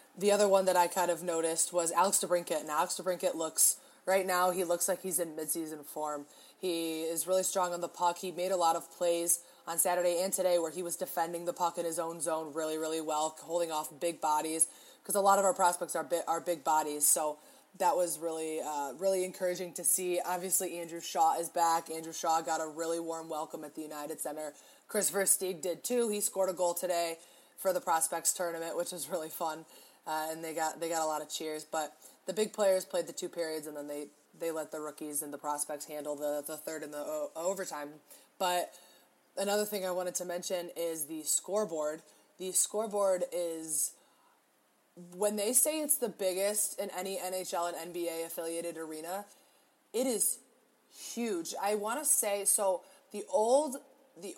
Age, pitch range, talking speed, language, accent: 20-39, 160-190 Hz, 200 wpm, English, American